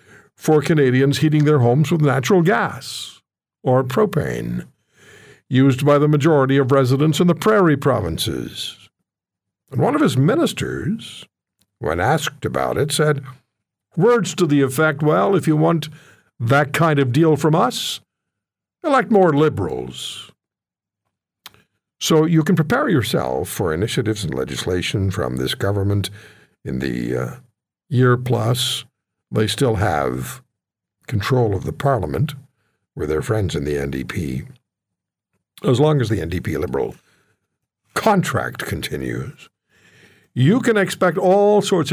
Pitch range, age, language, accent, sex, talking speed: 105-155 Hz, 60-79, English, American, male, 125 wpm